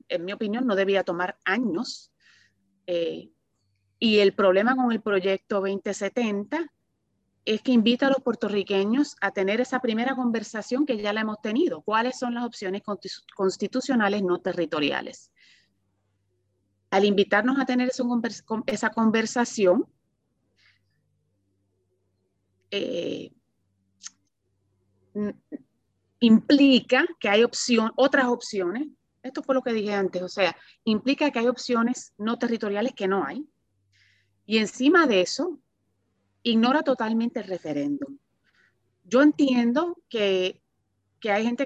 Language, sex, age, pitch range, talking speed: Spanish, female, 30-49, 180-250 Hz, 120 wpm